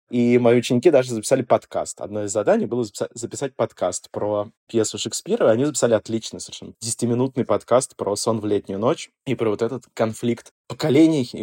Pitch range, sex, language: 115-150 Hz, male, Russian